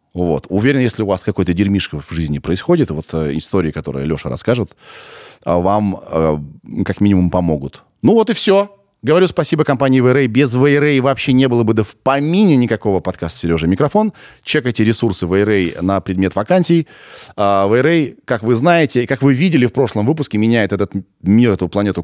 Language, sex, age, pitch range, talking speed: Russian, male, 30-49, 90-125 Hz, 175 wpm